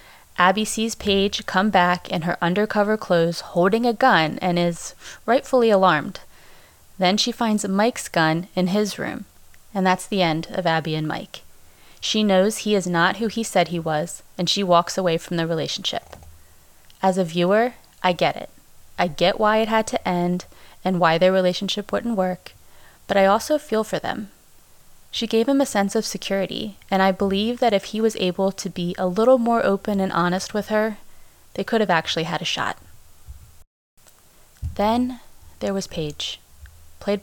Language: English